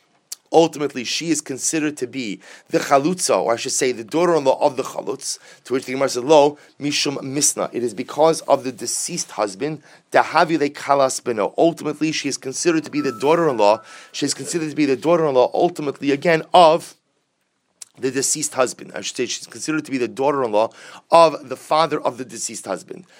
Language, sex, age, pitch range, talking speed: English, male, 30-49, 125-165 Hz, 185 wpm